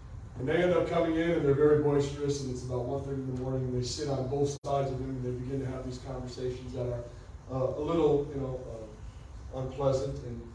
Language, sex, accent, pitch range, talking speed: English, male, American, 125-165 Hz, 240 wpm